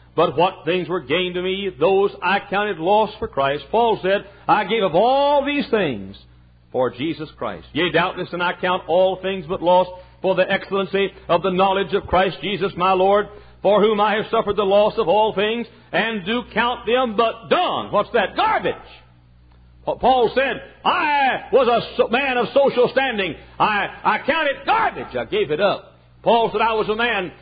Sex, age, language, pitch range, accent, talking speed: male, 60-79, English, 175-240 Hz, American, 190 wpm